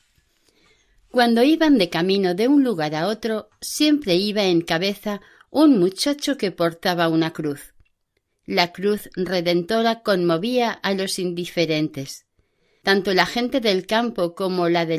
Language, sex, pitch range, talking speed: Spanish, female, 170-225 Hz, 135 wpm